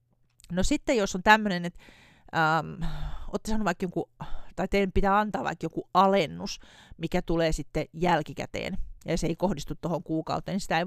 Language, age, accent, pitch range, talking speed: Finnish, 40-59, native, 155-190 Hz, 165 wpm